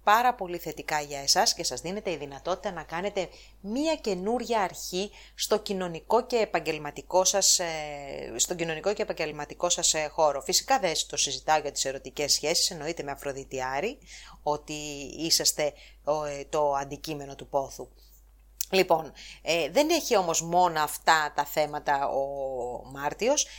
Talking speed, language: 135 wpm, English